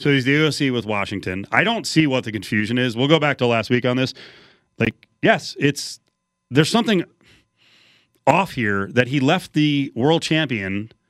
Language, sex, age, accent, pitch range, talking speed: English, male, 30-49, American, 110-150 Hz, 185 wpm